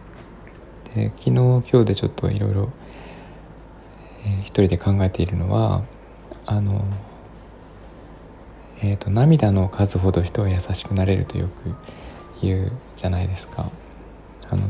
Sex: male